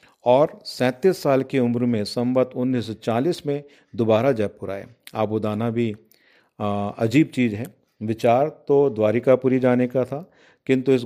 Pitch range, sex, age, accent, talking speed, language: 110-125 Hz, male, 40-59, native, 135 wpm, Hindi